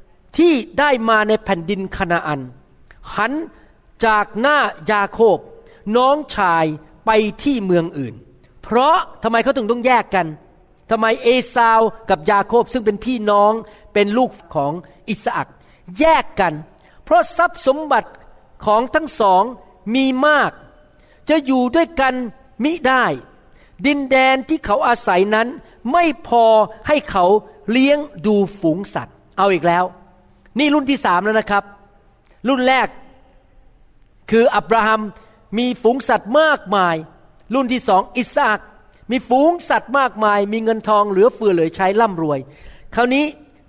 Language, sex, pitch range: Thai, male, 200-270 Hz